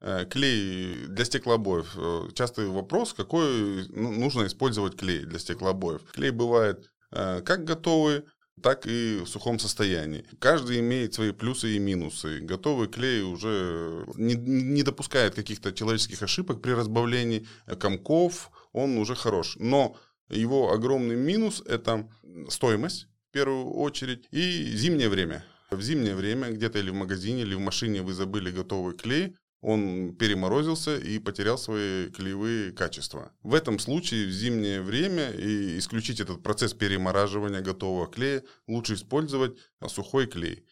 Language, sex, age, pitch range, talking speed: Russian, male, 20-39, 100-135 Hz, 135 wpm